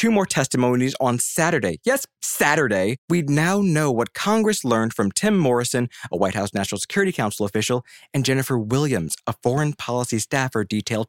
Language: English